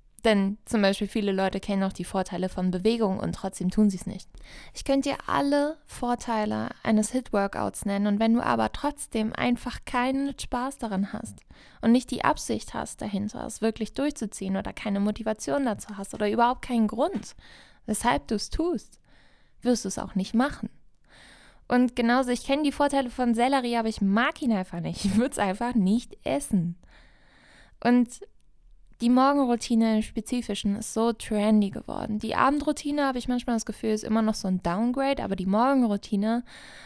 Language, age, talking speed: German, 10-29, 175 wpm